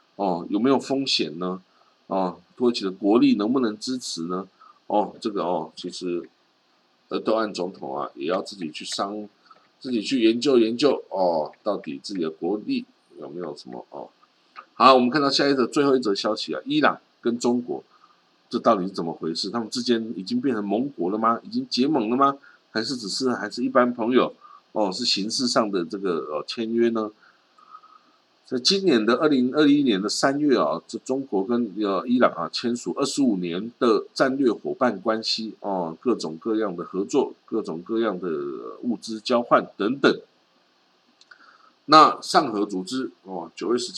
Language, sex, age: Chinese, male, 50-69